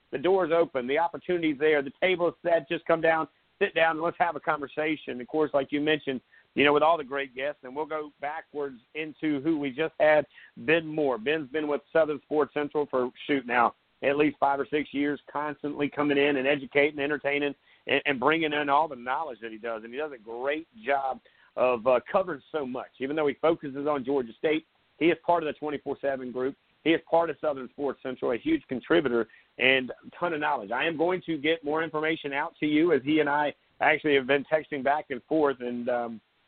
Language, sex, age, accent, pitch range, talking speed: English, male, 50-69, American, 135-155 Hz, 230 wpm